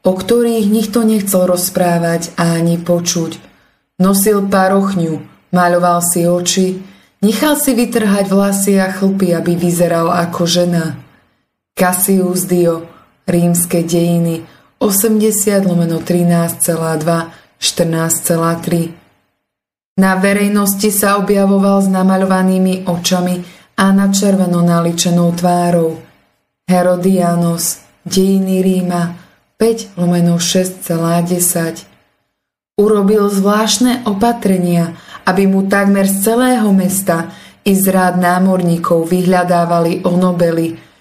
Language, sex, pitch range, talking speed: English, female, 170-195 Hz, 90 wpm